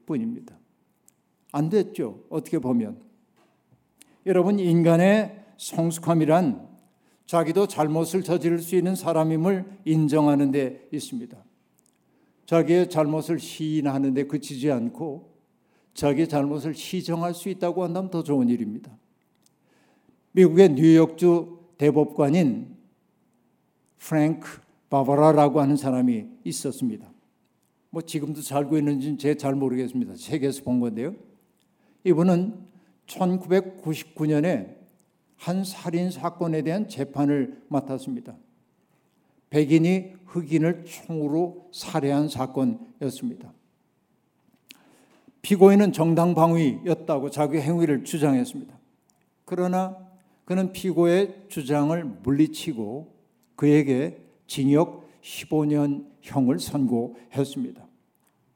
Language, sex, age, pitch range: Korean, male, 60-79, 145-185 Hz